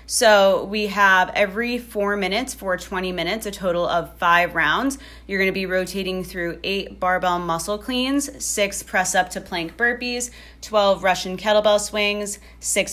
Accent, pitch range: American, 170-205 Hz